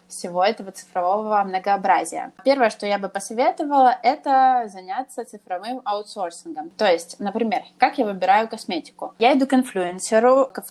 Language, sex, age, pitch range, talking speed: Russian, female, 20-39, 190-250 Hz, 140 wpm